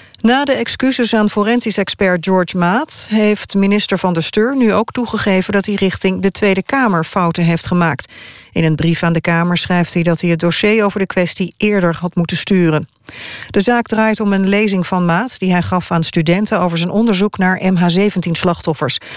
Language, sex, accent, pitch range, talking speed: Dutch, female, Dutch, 165-195 Hz, 190 wpm